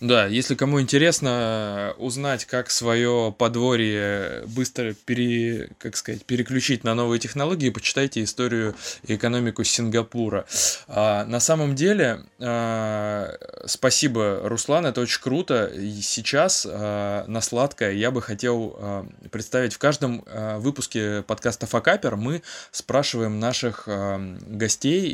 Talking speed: 110 wpm